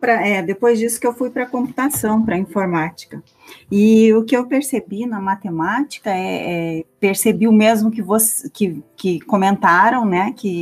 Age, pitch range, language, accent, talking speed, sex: 30-49, 170-225 Hz, Portuguese, Brazilian, 145 wpm, female